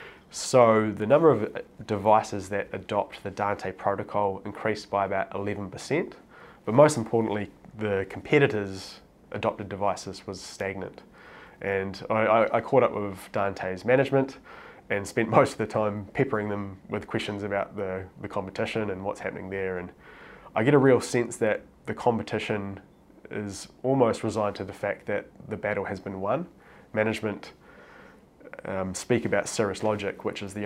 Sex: male